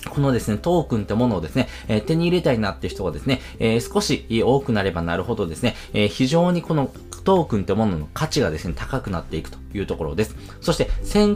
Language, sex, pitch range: Japanese, male, 95-145 Hz